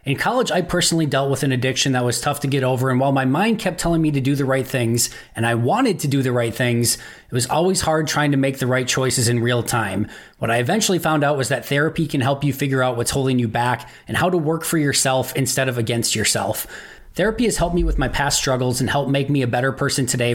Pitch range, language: 120-145 Hz, English